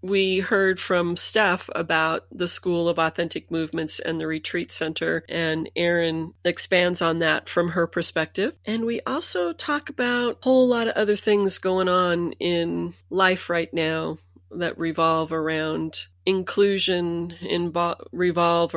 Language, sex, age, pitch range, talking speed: English, female, 30-49, 155-180 Hz, 140 wpm